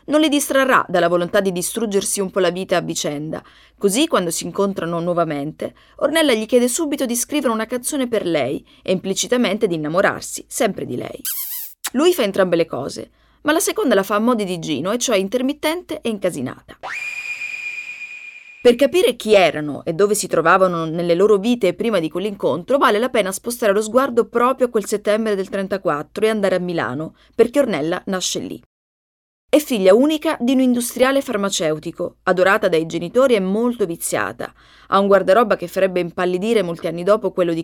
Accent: native